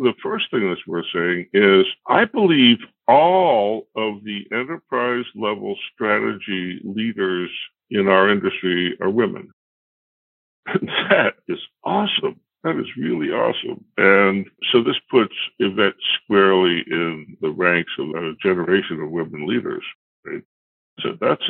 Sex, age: female, 60-79